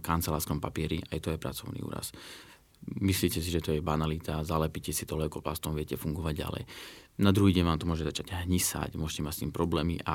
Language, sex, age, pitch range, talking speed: Slovak, male, 20-39, 80-90 Hz, 200 wpm